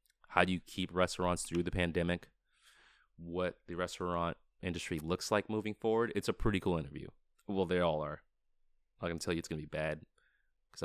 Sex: male